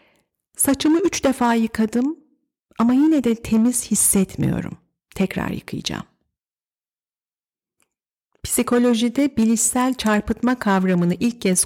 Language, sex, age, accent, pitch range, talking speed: Turkish, female, 40-59, native, 175-230 Hz, 85 wpm